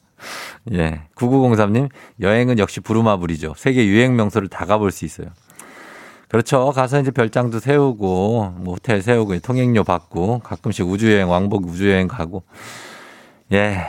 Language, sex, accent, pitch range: Korean, male, native, 95-130 Hz